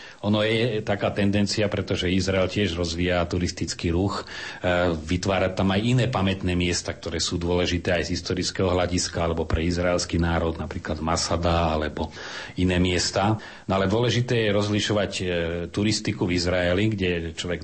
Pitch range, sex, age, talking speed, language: 85-100 Hz, male, 40-59, 145 wpm, Slovak